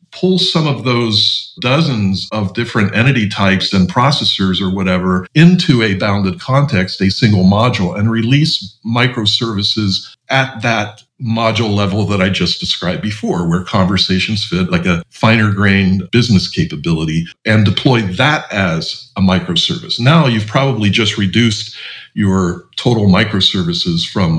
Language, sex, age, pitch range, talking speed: English, male, 50-69, 95-125 Hz, 140 wpm